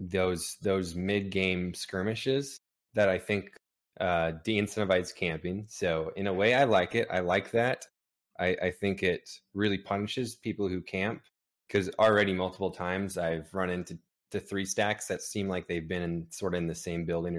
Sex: male